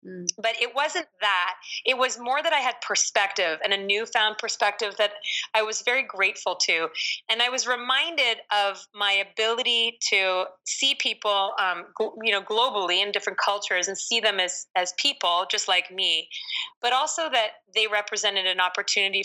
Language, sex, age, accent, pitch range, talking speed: English, female, 30-49, American, 185-220 Hz, 170 wpm